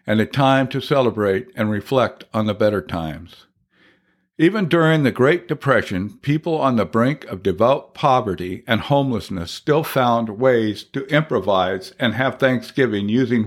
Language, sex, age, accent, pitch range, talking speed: English, male, 60-79, American, 115-140 Hz, 150 wpm